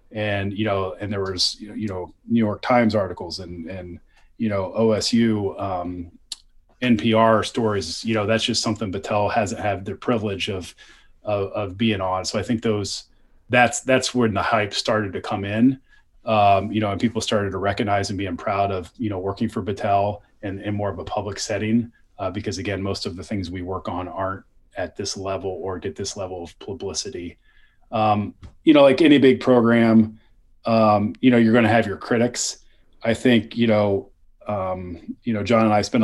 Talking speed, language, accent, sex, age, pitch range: 195 wpm, English, American, male, 30-49, 100-115 Hz